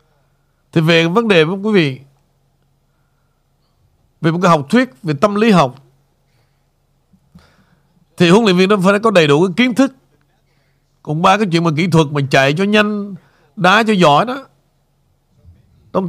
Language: Vietnamese